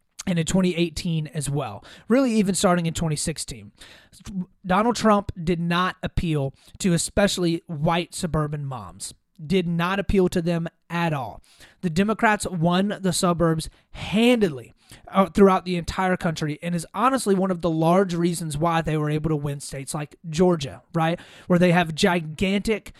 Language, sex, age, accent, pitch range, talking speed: English, male, 30-49, American, 160-190 Hz, 155 wpm